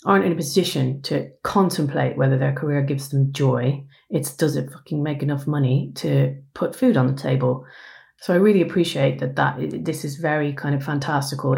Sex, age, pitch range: female, 30-49, 140-175 Hz